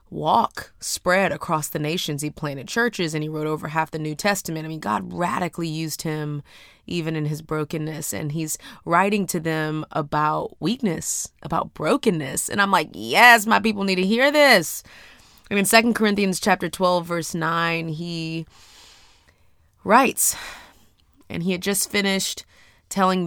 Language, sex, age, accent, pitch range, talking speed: English, female, 30-49, American, 140-175 Hz, 155 wpm